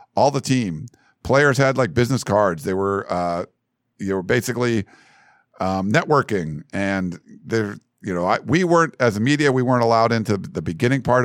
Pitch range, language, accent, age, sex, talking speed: 100-125 Hz, English, American, 50-69, male, 175 wpm